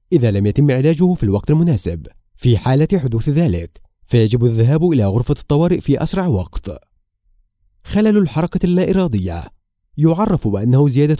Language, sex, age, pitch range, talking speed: Arabic, male, 30-49, 105-170 Hz, 140 wpm